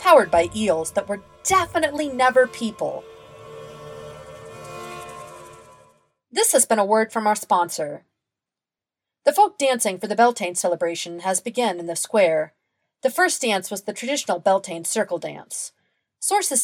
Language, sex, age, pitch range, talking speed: English, female, 40-59, 170-255 Hz, 135 wpm